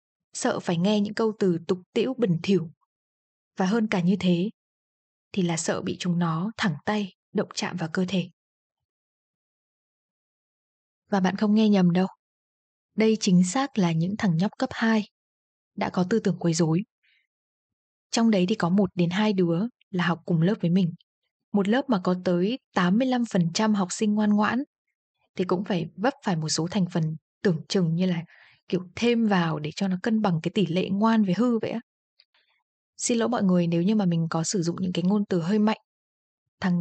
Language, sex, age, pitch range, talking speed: Vietnamese, female, 20-39, 175-215 Hz, 200 wpm